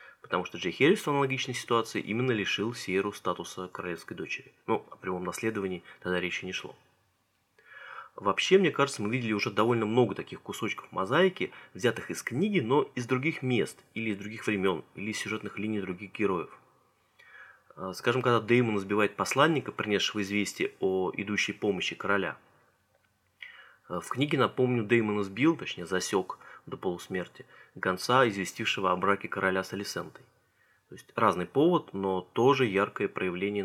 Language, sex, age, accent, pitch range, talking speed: Russian, male, 30-49, native, 95-125 Hz, 150 wpm